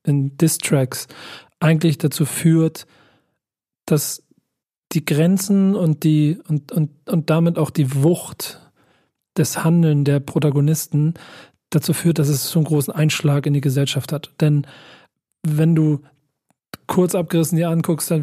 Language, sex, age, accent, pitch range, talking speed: German, male, 40-59, German, 150-165 Hz, 125 wpm